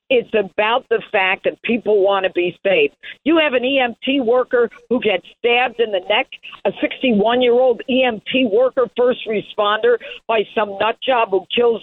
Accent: American